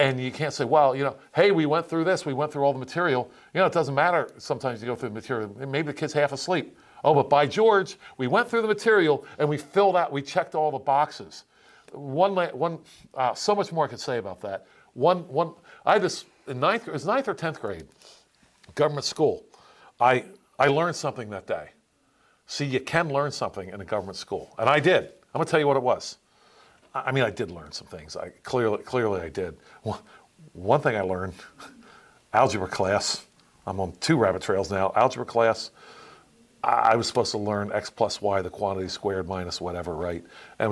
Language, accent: English, American